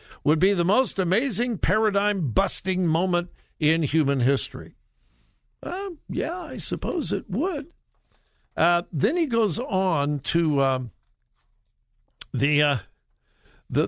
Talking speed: 115 wpm